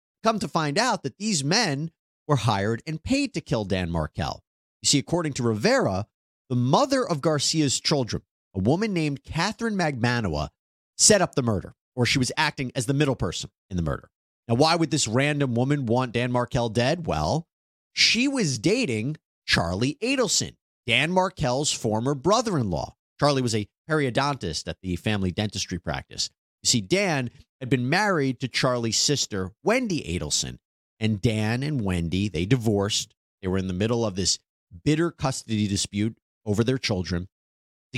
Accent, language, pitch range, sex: American, English, 100-150 Hz, male